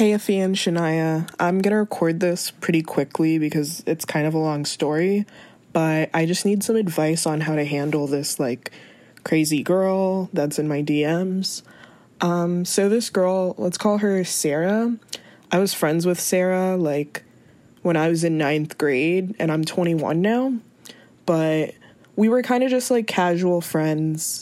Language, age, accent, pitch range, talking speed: English, 20-39, American, 160-200 Hz, 165 wpm